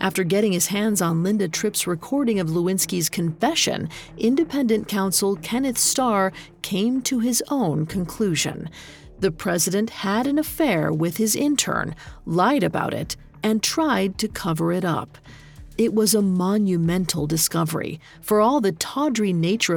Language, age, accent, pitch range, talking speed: English, 40-59, American, 175-235 Hz, 145 wpm